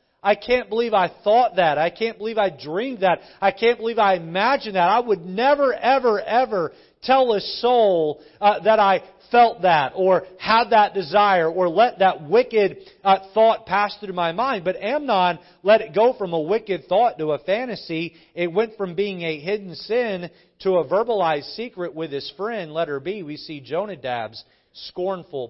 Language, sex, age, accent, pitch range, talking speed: English, male, 40-59, American, 145-200 Hz, 180 wpm